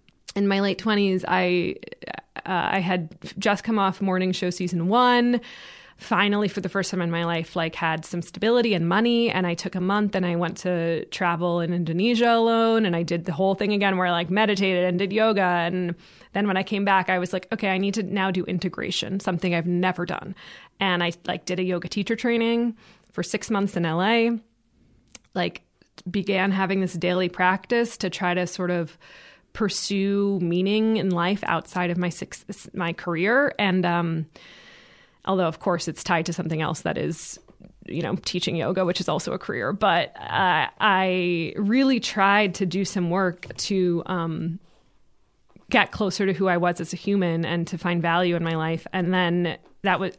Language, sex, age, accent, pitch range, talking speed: English, female, 20-39, American, 175-205 Hz, 190 wpm